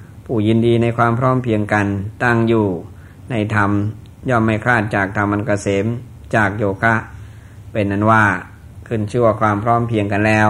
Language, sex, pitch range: Thai, male, 105-115 Hz